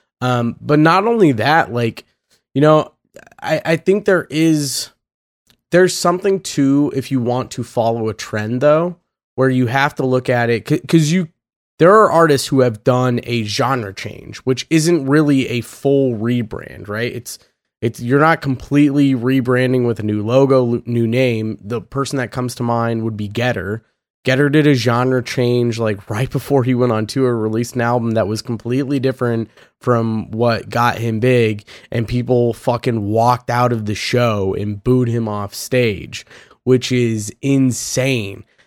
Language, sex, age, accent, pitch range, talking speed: English, male, 20-39, American, 115-140 Hz, 170 wpm